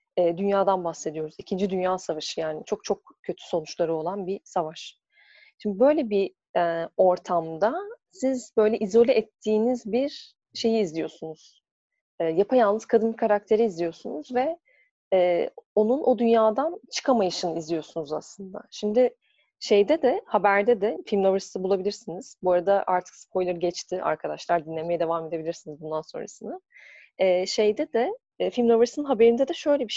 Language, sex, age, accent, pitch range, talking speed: Turkish, female, 30-49, native, 180-245 Hz, 130 wpm